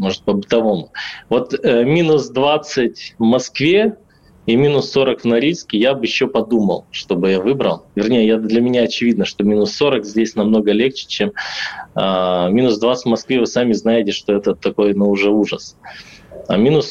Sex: male